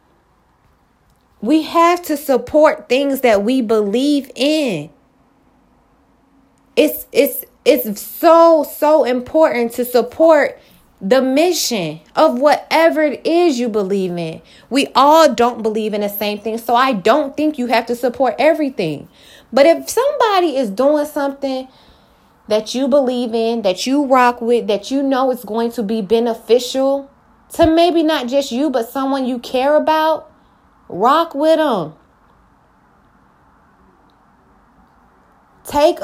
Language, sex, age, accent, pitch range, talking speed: English, female, 20-39, American, 230-295 Hz, 130 wpm